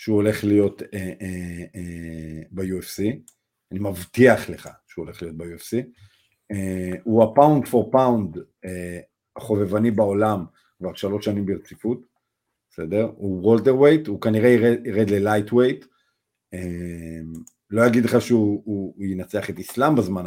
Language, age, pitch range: Hebrew, 50-69, 100-125 Hz